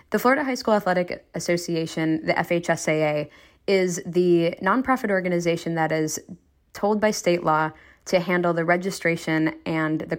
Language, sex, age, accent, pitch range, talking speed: English, female, 10-29, American, 165-205 Hz, 140 wpm